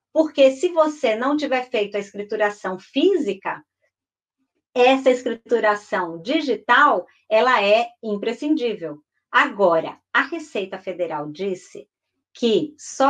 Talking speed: 100 wpm